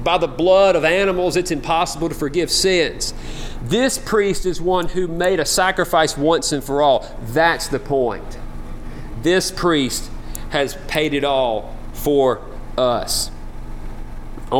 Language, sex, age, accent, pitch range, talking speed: English, male, 40-59, American, 130-180 Hz, 140 wpm